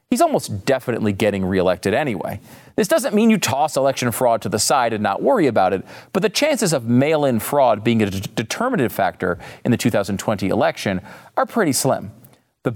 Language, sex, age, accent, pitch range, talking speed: English, male, 40-59, American, 110-170 Hz, 185 wpm